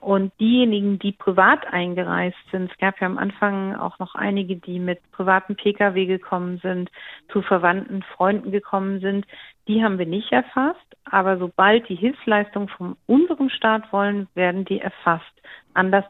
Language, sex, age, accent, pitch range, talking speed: German, female, 50-69, German, 185-205 Hz, 155 wpm